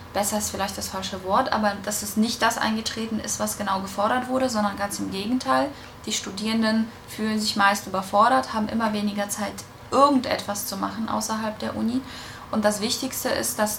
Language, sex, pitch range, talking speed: German, female, 190-225 Hz, 185 wpm